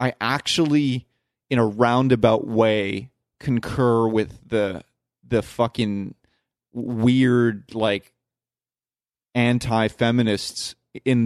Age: 30-49